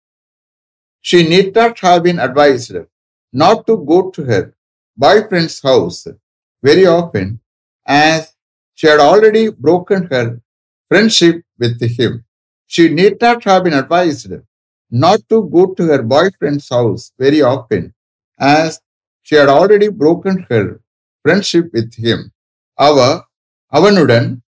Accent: Indian